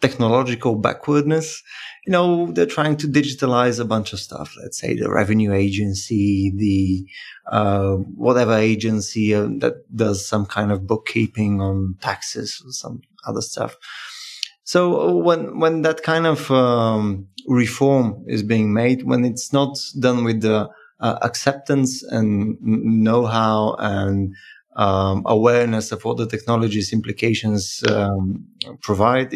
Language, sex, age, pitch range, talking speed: Bulgarian, male, 20-39, 105-135 Hz, 135 wpm